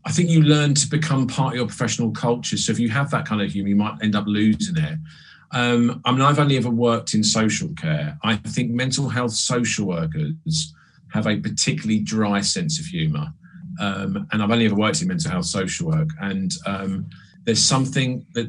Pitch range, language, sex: 105-155 Hz, English, male